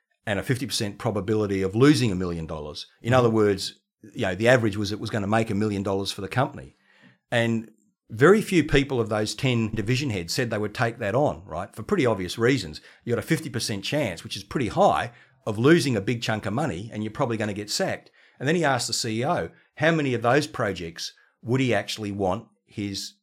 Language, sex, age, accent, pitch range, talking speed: English, male, 50-69, Australian, 100-130 Hz, 225 wpm